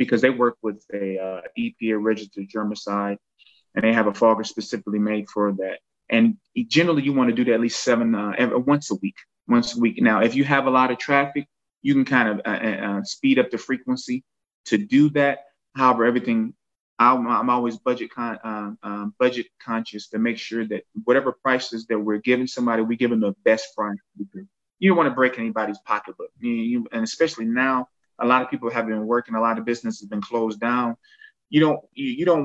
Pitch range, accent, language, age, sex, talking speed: 110-145 Hz, American, English, 20-39, male, 200 wpm